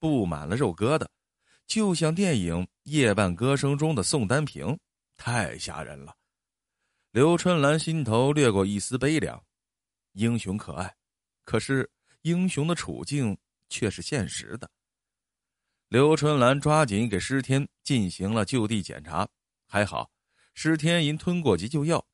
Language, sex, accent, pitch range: Chinese, male, native, 105-155 Hz